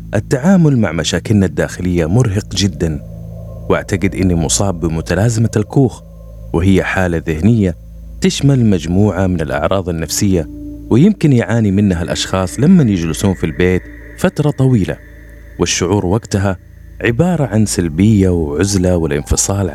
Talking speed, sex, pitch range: 110 wpm, male, 85-110 Hz